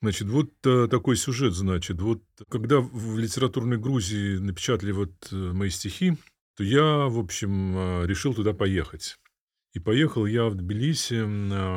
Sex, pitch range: male, 95-125 Hz